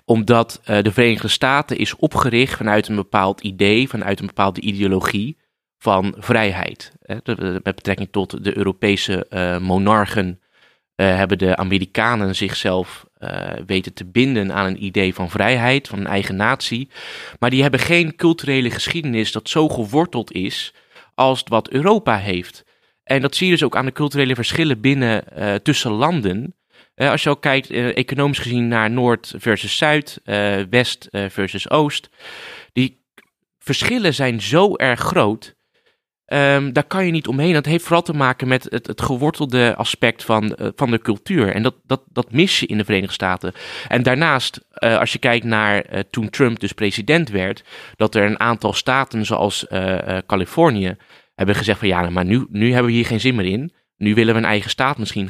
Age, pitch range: 20-39, 100-135 Hz